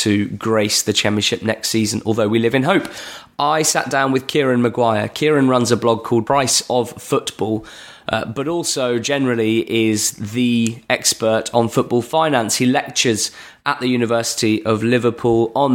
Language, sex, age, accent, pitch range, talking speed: English, male, 20-39, British, 110-125 Hz, 165 wpm